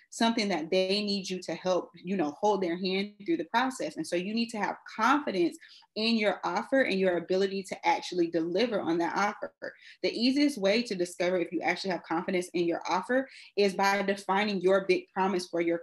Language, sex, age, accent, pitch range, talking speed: English, female, 30-49, American, 175-225 Hz, 210 wpm